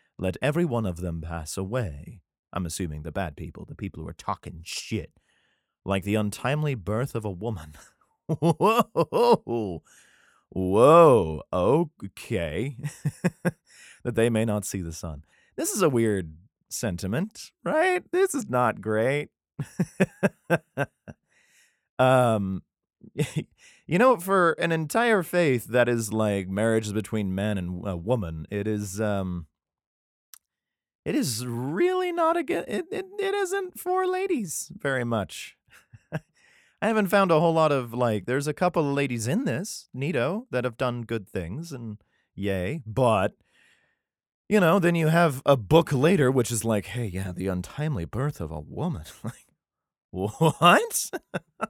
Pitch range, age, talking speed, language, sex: 100-165 Hz, 30-49, 145 wpm, English, male